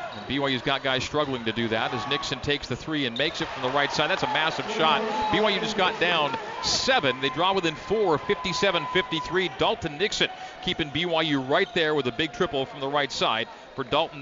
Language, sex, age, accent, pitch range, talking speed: English, male, 40-59, American, 145-240 Hz, 205 wpm